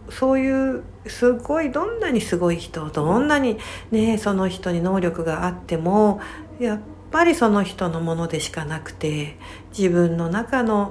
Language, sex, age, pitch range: Japanese, female, 60-79, 170-230 Hz